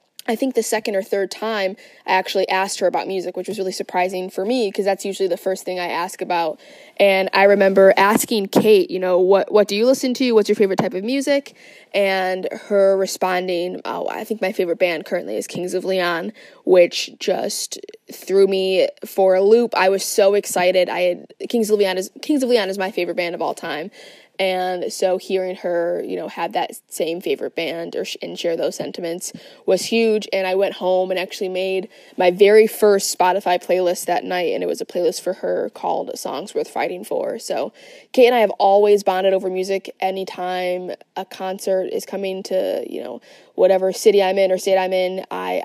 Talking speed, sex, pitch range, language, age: 205 wpm, female, 185-220 Hz, English, 20-39